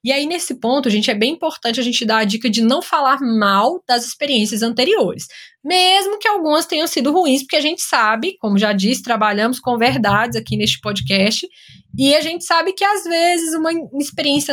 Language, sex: Portuguese, female